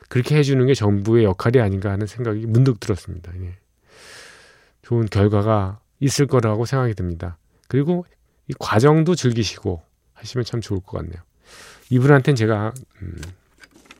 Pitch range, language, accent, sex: 95-140 Hz, Korean, native, male